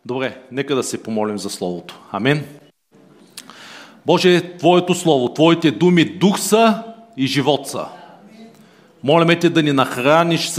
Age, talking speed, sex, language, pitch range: 40-59, 130 wpm, male, Bulgarian, 155-190 Hz